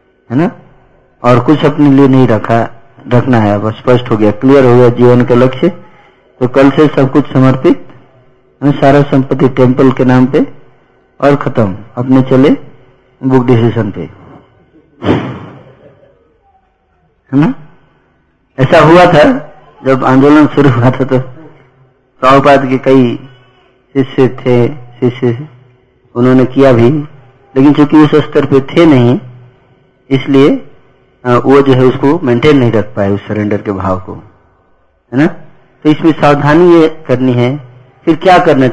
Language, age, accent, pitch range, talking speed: Hindi, 50-69, native, 125-145 Hz, 140 wpm